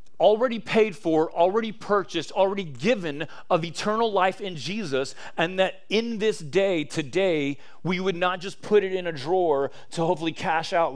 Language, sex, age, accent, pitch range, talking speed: English, male, 30-49, American, 140-195 Hz, 170 wpm